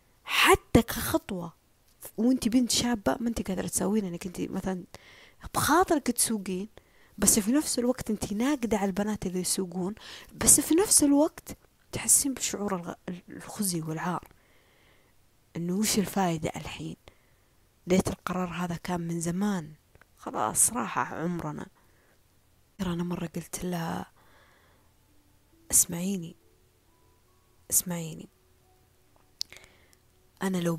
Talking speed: 105 wpm